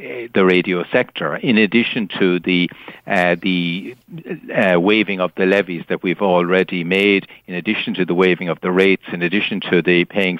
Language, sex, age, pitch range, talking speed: English, male, 60-79, 90-105 Hz, 180 wpm